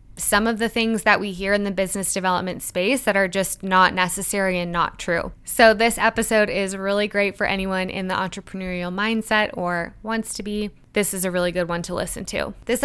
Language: English